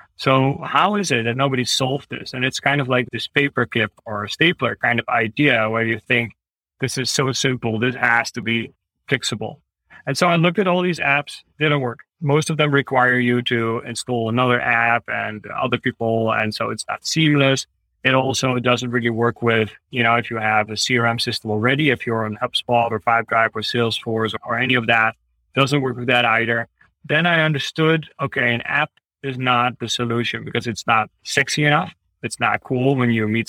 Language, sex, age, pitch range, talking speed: English, male, 30-49, 115-140 Hz, 205 wpm